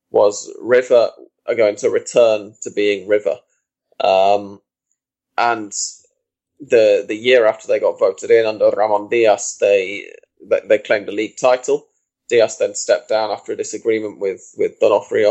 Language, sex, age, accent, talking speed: English, male, 20-39, British, 150 wpm